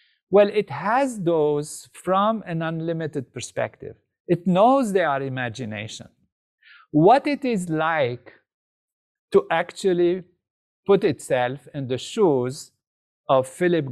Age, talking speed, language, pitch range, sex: 50-69, 110 wpm, English, 130-190 Hz, male